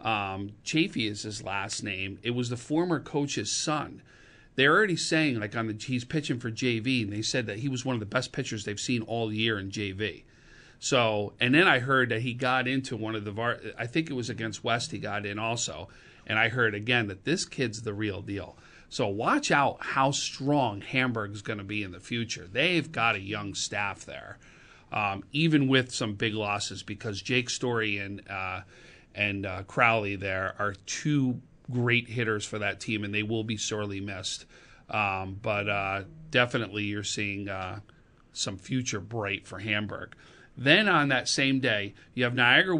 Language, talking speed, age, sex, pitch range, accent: English, 190 wpm, 40-59, male, 105-130 Hz, American